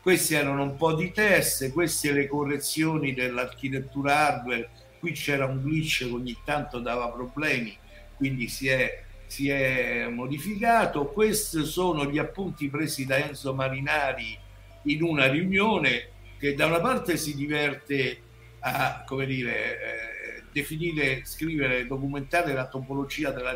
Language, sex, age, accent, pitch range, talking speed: Italian, male, 60-79, native, 125-150 Hz, 140 wpm